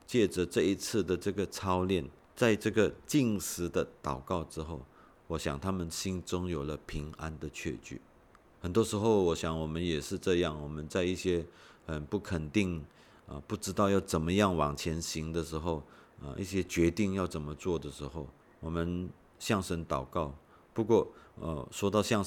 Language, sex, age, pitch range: Chinese, male, 50-69, 75-95 Hz